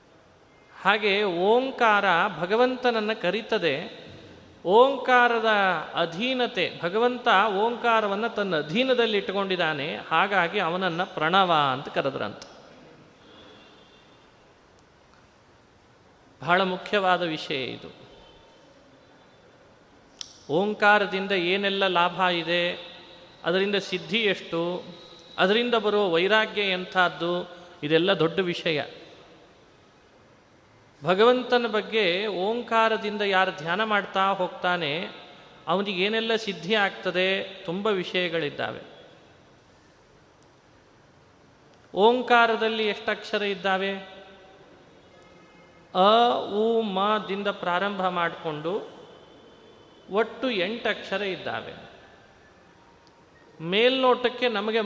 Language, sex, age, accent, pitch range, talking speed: Kannada, male, 30-49, native, 175-220 Hz, 65 wpm